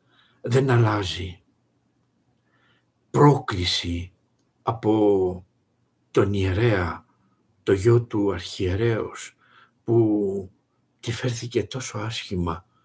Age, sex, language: 60-79, male, Greek